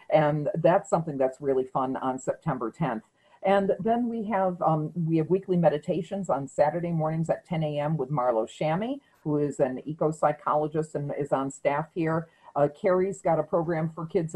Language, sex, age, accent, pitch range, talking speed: English, female, 50-69, American, 145-190 Hz, 185 wpm